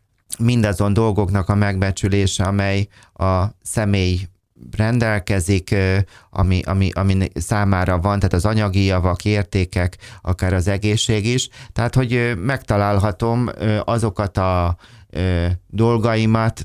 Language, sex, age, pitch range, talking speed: Hungarian, male, 30-49, 95-105 Hz, 100 wpm